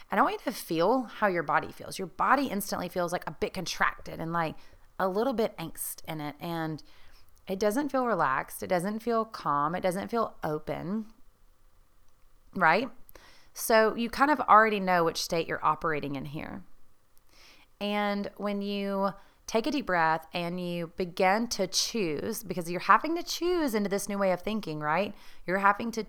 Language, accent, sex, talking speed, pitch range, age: English, American, female, 185 wpm, 165-210 Hz, 30-49